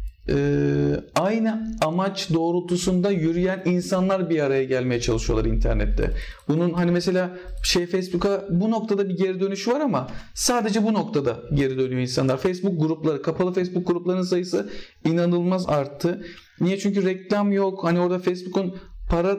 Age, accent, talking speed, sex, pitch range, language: 40-59, native, 140 wpm, male, 175-210 Hz, Turkish